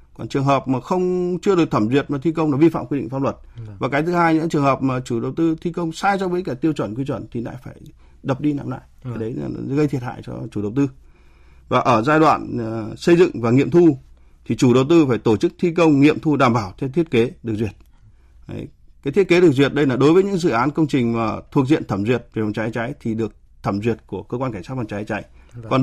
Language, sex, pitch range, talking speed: Vietnamese, male, 110-150 Hz, 285 wpm